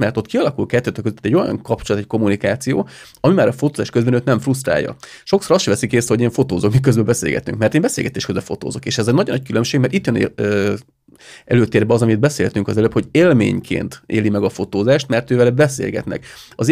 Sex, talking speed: male, 210 wpm